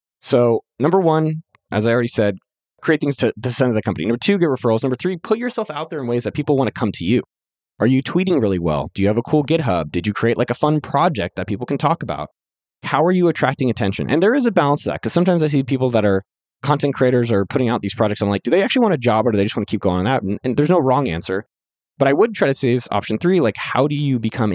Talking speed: 295 wpm